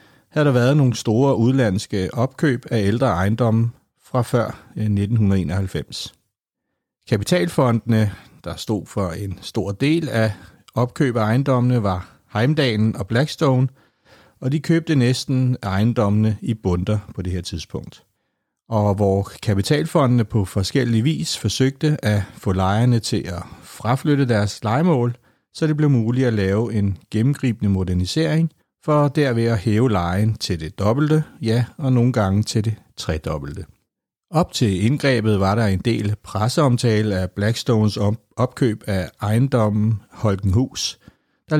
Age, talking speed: 60-79, 135 wpm